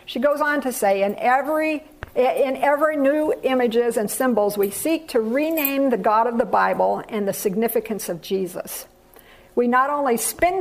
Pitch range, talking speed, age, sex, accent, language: 200-265 Hz, 170 wpm, 50-69, female, American, English